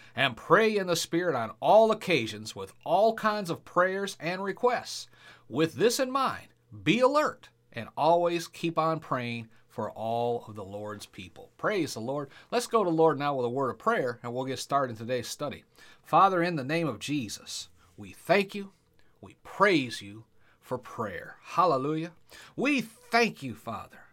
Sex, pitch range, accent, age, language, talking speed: male, 120-170 Hz, American, 40-59, English, 180 wpm